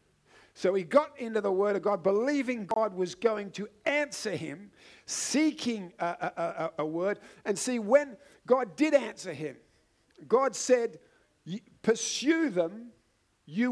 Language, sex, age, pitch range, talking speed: English, male, 50-69, 190-240 Hz, 140 wpm